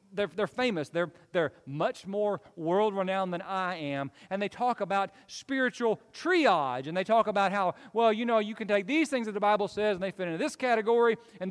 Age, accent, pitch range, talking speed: 40-59, American, 195-280 Hz, 215 wpm